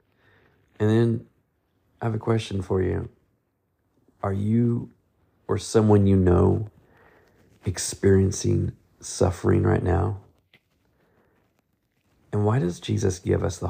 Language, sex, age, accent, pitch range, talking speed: English, male, 40-59, American, 90-110 Hz, 110 wpm